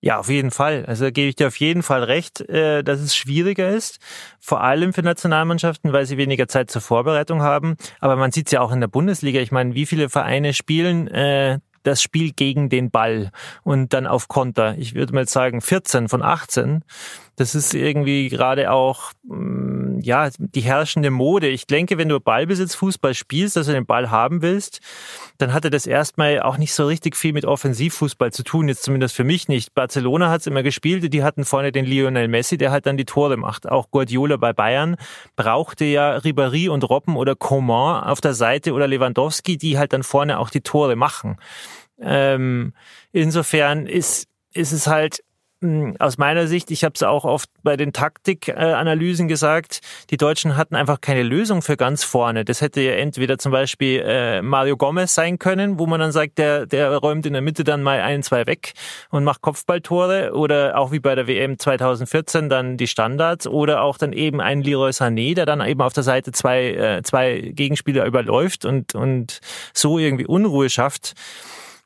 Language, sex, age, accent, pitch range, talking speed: German, male, 30-49, German, 135-160 Hz, 190 wpm